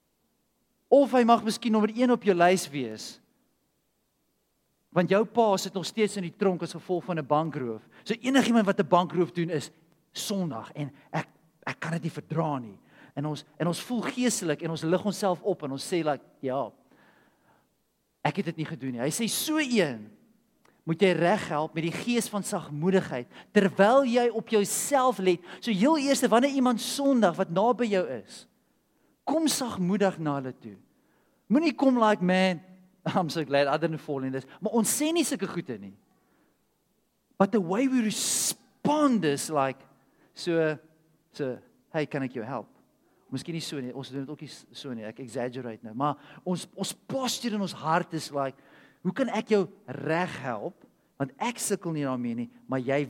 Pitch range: 145-205 Hz